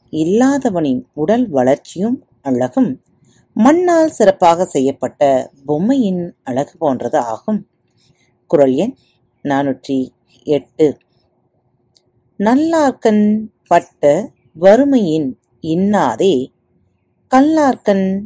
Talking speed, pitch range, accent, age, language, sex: 60 wpm, 135-230 Hz, native, 30-49, Tamil, female